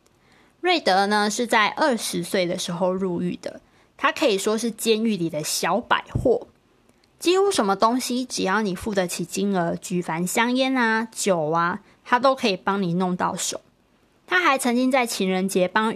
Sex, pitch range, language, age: female, 185-245 Hz, Chinese, 20-39